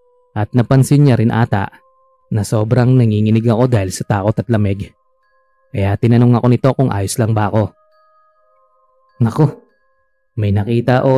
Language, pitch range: Filipino, 105-150 Hz